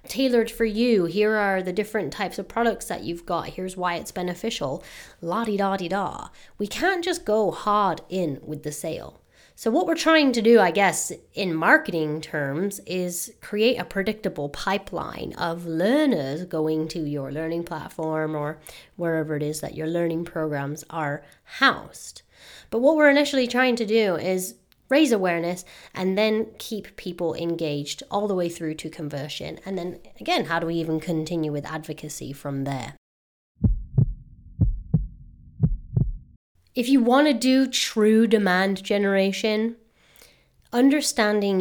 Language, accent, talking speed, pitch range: English, American, 145 wpm, 160-215 Hz